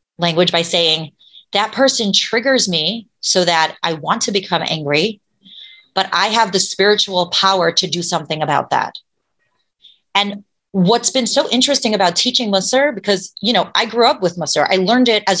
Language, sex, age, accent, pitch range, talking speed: English, female, 30-49, American, 180-245 Hz, 175 wpm